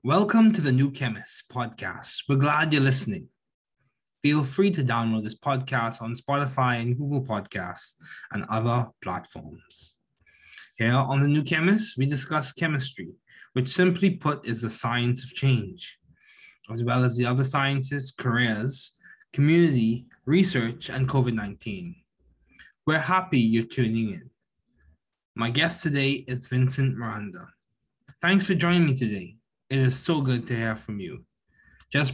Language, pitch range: English, 115-145 Hz